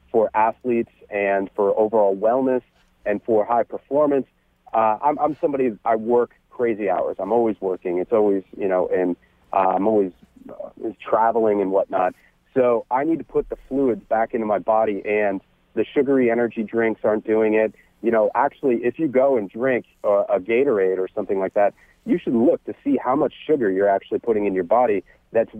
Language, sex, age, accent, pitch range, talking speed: English, male, 40-59, American, 100-125 Hz, 190 wpm